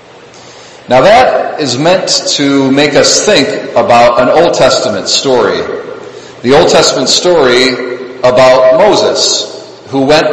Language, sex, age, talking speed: English, male, 40-59, 120 wpm